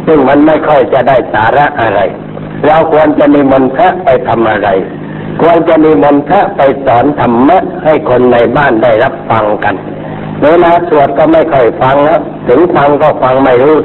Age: 60-79